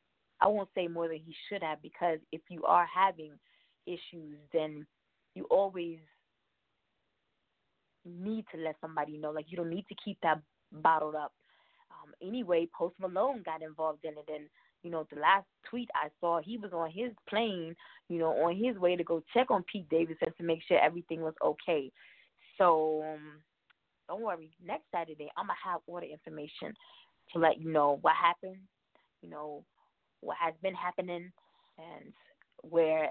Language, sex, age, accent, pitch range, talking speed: English, female, 20-39, American, 160-195 Hz, 175 wpm